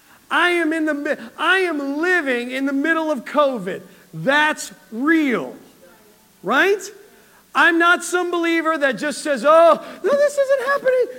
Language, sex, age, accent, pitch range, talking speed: English, male, 40-59, American, 225-300 Hz, 145 wpm